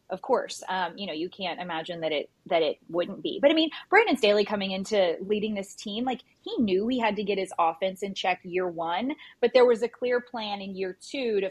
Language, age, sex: English, 20-39, female